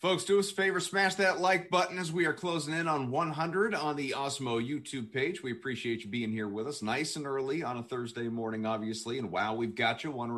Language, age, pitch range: English, 30-49, 115-150 Hz